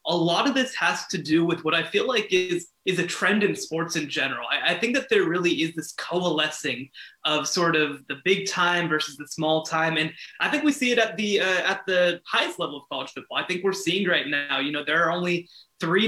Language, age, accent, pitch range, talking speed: English, 20-39, American, 155-190 Hz, 250 wpm